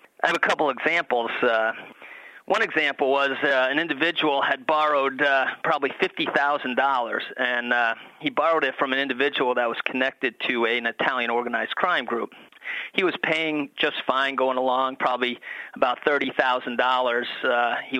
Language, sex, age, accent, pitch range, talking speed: English, male, 30-49, American, 125-150 Hz, 160 wpm